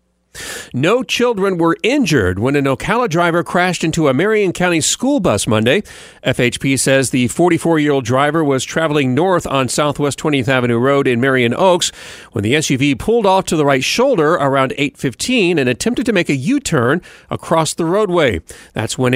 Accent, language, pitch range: American, English, 130-175 Hz